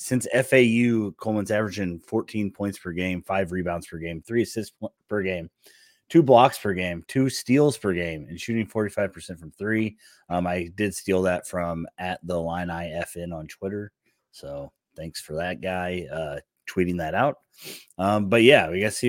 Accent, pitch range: American, 85-100 Hz